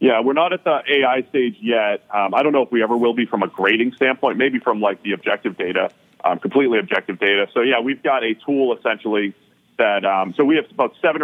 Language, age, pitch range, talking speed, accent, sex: English, 40-59, 100-120 Hz, 240 wpm, American, male